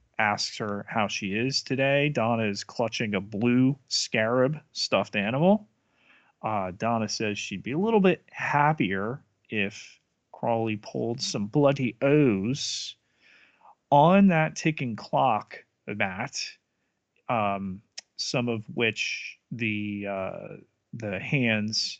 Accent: American